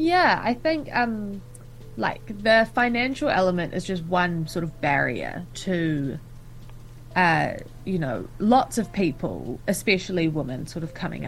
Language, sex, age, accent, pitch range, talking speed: English, female, 20-39, Australian, 155-190 Hz, 140 wpm